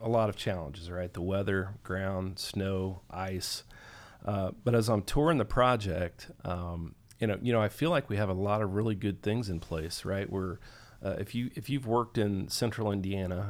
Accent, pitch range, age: American, 95-110 Hz, 40-59